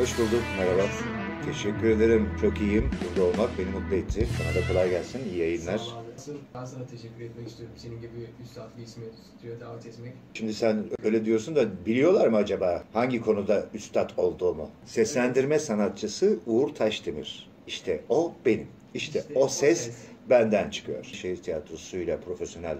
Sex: male